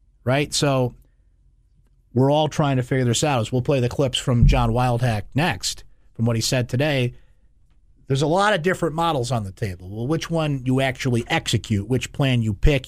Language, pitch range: English, 115-150 Hz